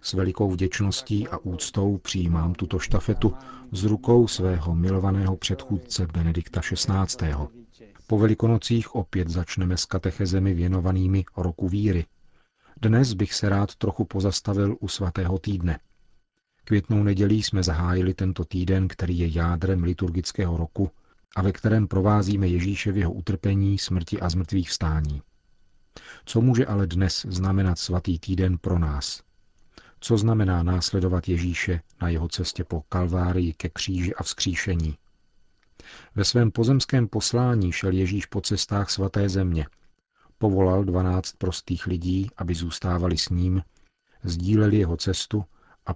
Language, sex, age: Czech, male, 40-59